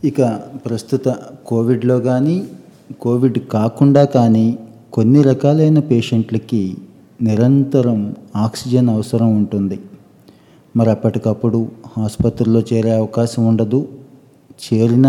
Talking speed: 85 wpm